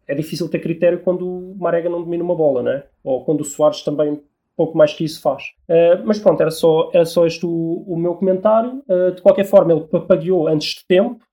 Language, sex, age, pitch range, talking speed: Portuguese, male, 20-39, 150-190 Hz, 240 wpm